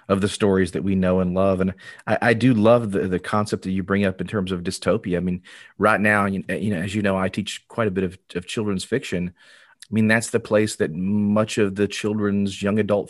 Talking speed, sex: 245 wpm, male